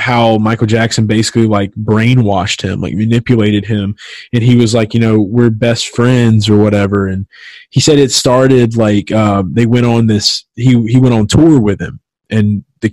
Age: 20-39